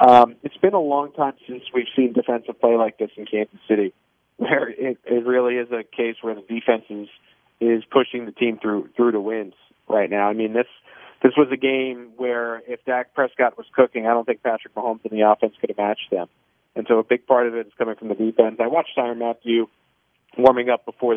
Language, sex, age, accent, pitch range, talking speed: English, male, 40-59, American, 115-130 Hz, 230 wpm